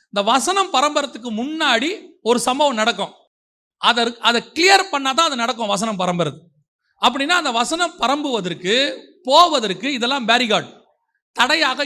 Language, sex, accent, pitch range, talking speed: Tamil, male, native, 220-285 Hz, 110 wpm